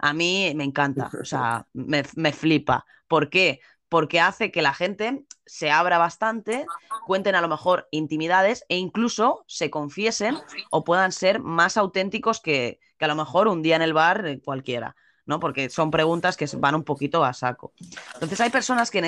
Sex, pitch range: female, 150-205 Hz